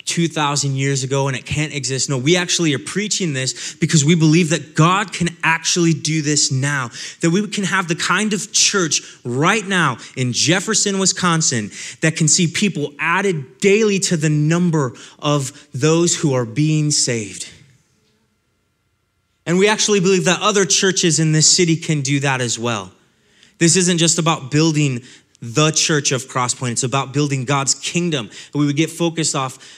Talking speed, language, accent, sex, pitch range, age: 175 wpm, English, American, male, 135-170 Hz, 20-39